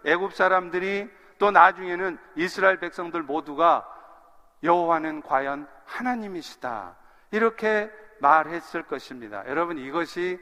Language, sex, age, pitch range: Korean, male, 50-69, 170-230 Hz